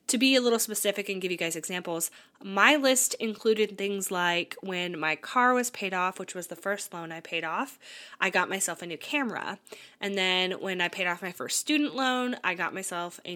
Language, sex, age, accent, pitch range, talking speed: English, female, 20-39, American, 175-250 Hz, 220 wpm